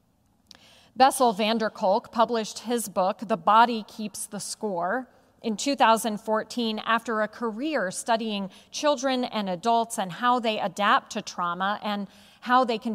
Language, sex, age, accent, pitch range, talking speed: English, female, 40-59, American, 205-255 Hz, 145 wpm